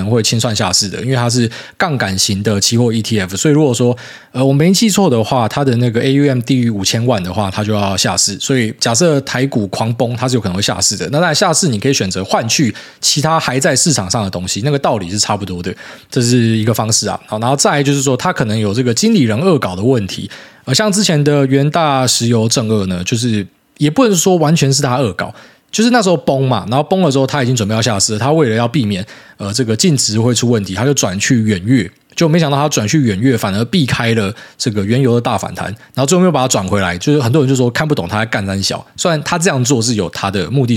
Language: Chinese